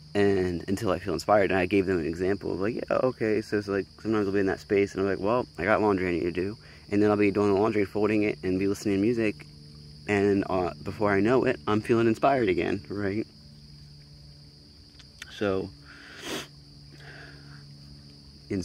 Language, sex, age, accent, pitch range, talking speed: English, male, 30-49, American, 75-105 Hz, 200 wpm